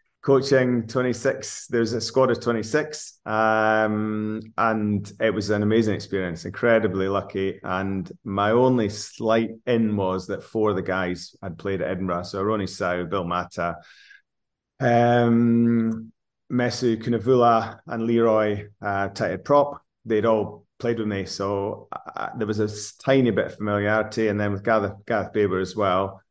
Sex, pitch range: male, 95-115 Hz